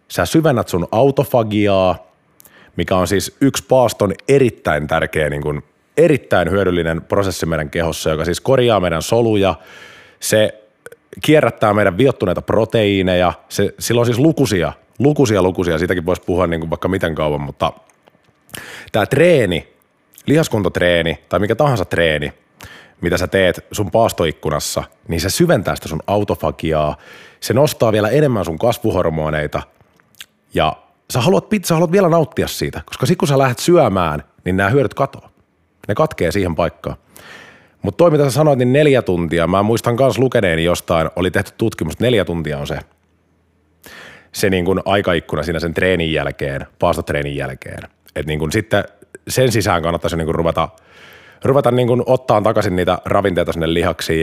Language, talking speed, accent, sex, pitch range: Finnish, 150 wpm, native, male, 85-120 Hz